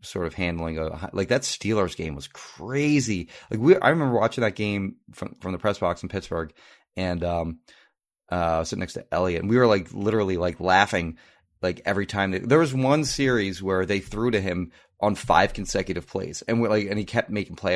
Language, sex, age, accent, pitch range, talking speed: English, male, 30-49, American, 90-115 Hz, 215 wpm